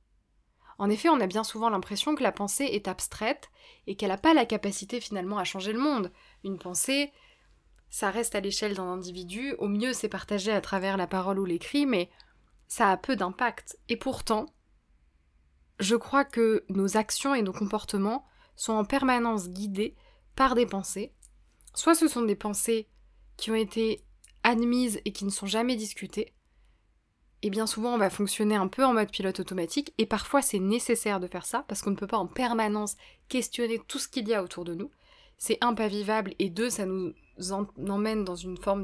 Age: 20-39